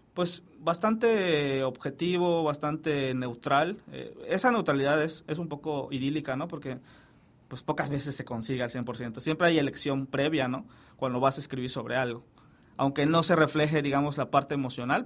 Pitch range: 130-160 Hz